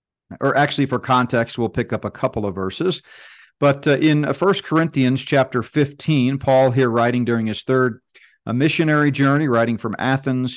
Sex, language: male, English